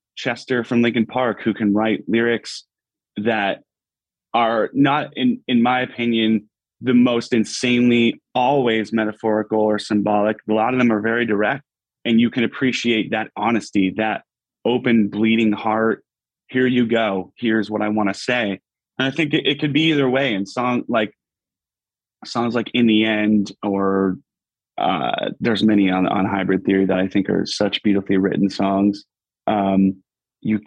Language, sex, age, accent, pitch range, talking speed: English, male, 30-49, American, 95-115 Hz, 160 wpm